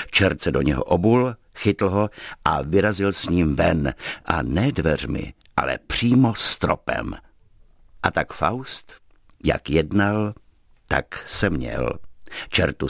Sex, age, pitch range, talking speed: male, 60-79, 80-105 Hz, 125 wpm